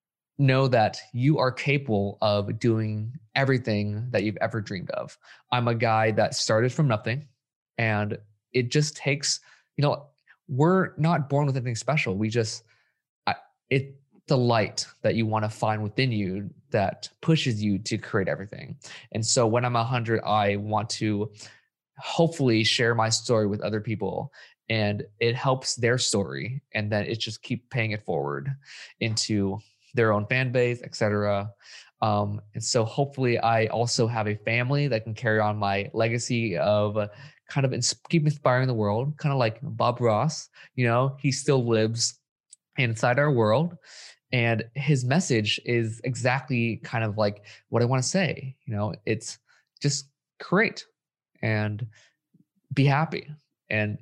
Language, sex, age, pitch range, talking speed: English, male, 20-39, 110-140 Hz, 155 wpm